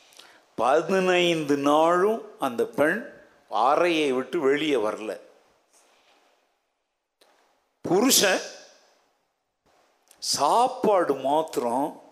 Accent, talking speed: native, 55 wpm